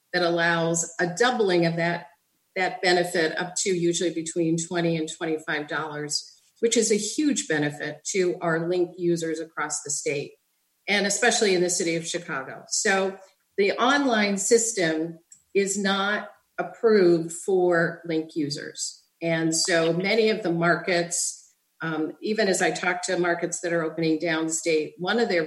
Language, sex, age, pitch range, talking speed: English, female, 50-69, 160-185 Hz, 150 wpm